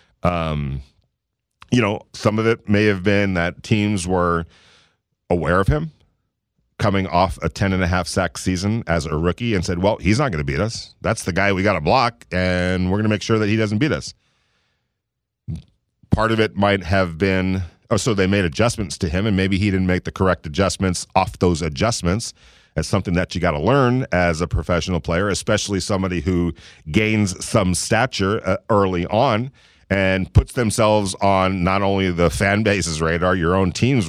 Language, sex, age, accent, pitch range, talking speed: English, male, 40-59, American, 90-120 Hz, 190 wpm